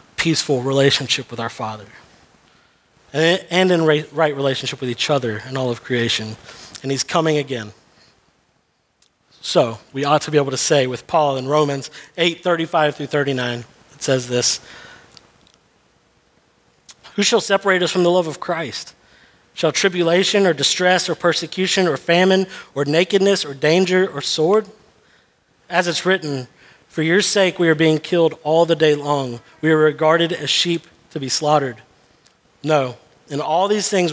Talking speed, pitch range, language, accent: 155 wpm, 135-180 Hz, English, American